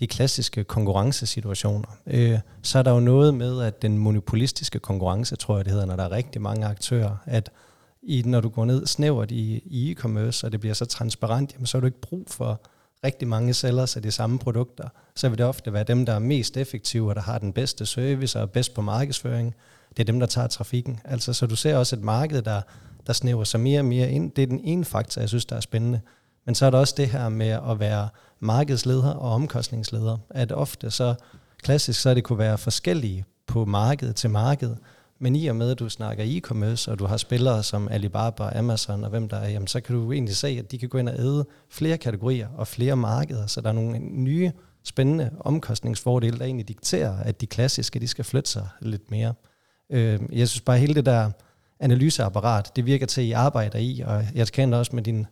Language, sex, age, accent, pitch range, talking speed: Danish, male, 40-59, native, 110-130 Hz, 220 wpm